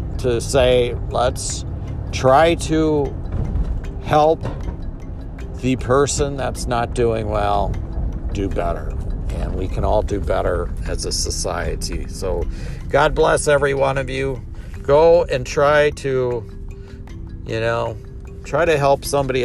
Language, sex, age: English, male, 50-69